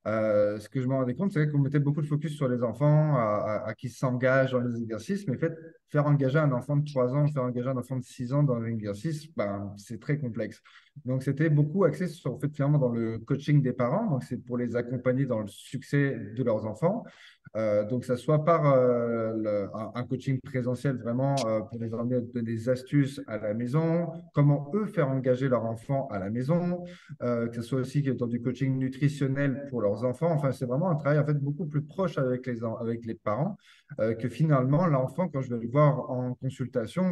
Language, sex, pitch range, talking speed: French, male, 120-145 Hz, 225 wpm